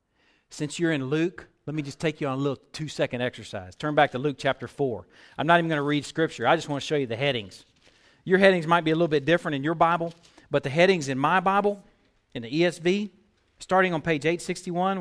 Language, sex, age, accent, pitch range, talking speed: English, male, 40-59, American, 150-205 Hz, 235 wpm